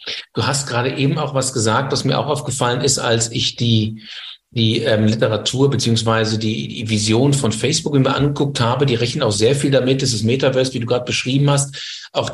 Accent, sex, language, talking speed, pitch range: German, male, German, 200 wpm, 120-160 Hz